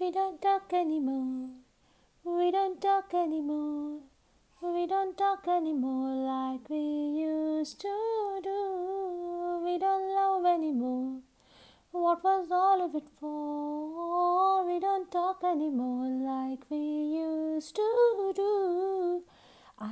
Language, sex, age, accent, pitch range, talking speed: Hindi, female, 30-49, native, 265-355 Hz, 110 wpm